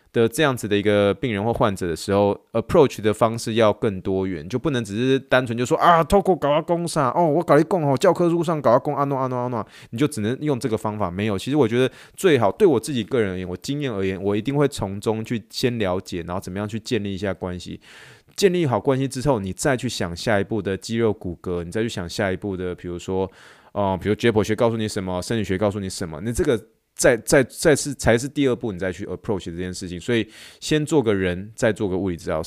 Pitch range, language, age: 100-145 Hz, Chinese, 20-39